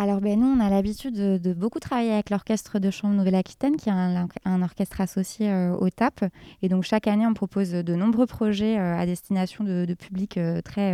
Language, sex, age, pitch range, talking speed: French, female, 20-39, 180-215 Hz, 225 wpm